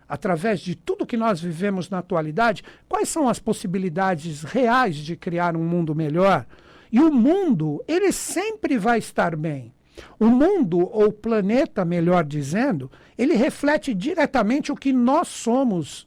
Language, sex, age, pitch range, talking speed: Portuguese, male, 60-79, 185-265 Hz, 150 wpm